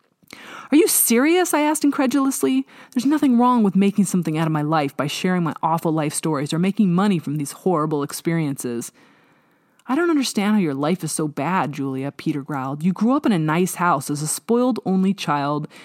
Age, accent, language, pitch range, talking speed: 30-49, American, English, 160-230 Hz, 200 wpm